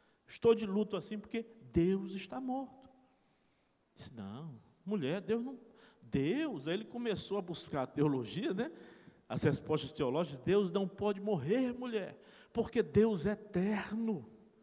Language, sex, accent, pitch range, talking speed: Portuguese, male, Brazilian, 155-240 Hz, 135 wpm